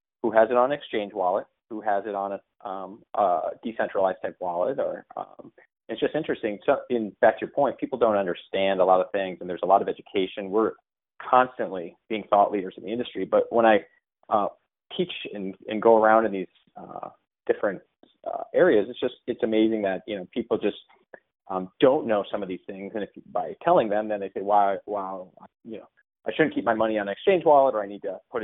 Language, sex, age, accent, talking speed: English, male, 30-49, American, 220 wpm